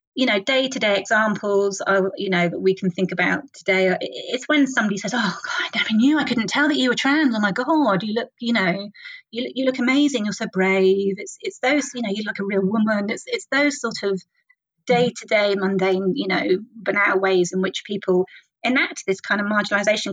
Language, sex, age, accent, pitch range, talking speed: English, female, 30-49, British, 190-255 Hz, 220 wpm